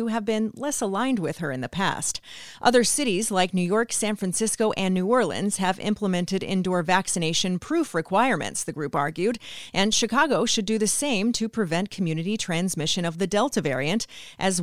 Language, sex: English, female